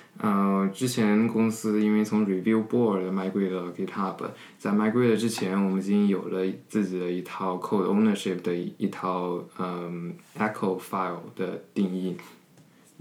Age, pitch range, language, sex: 20-39, 95-110 Hz, Chinese, male